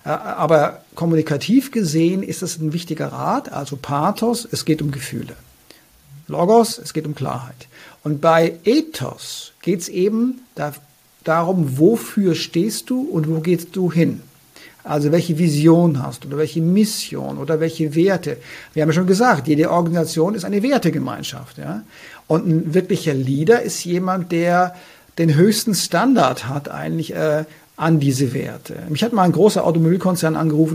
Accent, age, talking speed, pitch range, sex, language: German, 50-69, 155 wpm, 160-200 Hz, male, German